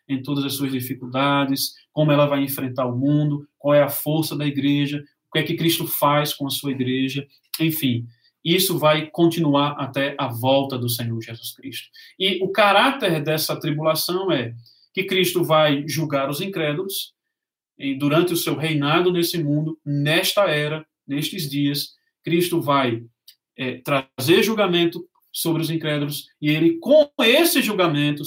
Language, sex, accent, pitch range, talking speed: Portuguese, male, Brazilian, 140-180 Hz, 155 wpm